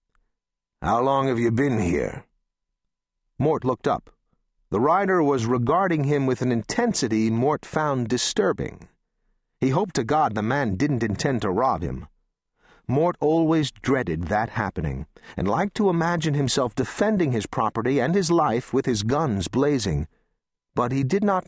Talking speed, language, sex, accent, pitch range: 155 wpm, English, male, American, 115-165 Hz